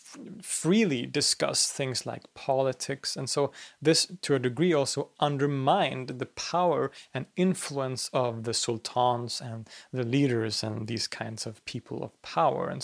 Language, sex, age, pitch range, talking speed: English, male, 30-49, 125-150 Hz, 145 wpm